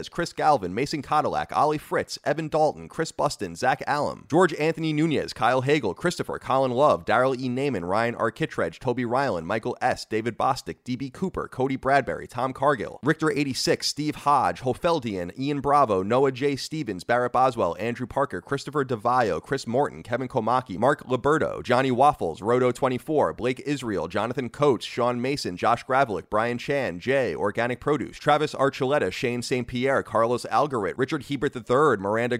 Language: English